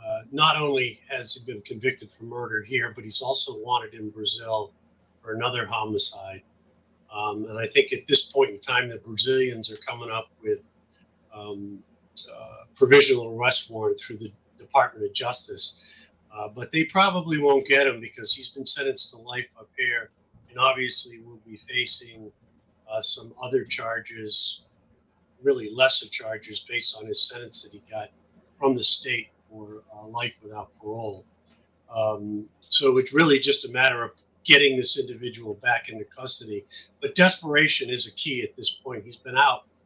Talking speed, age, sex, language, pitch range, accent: 170 wpm, 50-69, male, English, 110-155 Hz, American